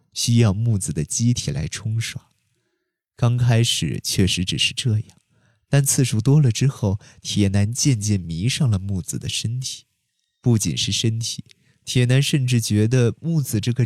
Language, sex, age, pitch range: Chinese, male, 20-39, 105-135 Hz